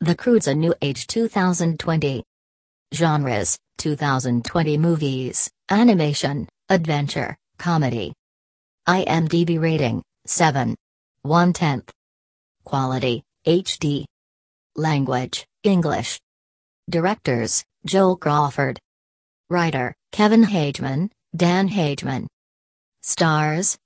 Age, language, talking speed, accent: 40-59, English, 70 wpm, American